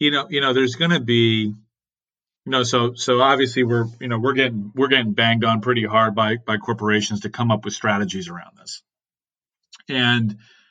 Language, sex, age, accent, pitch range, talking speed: English, male, 40-59, American, 110-135 Hz, 195 wpm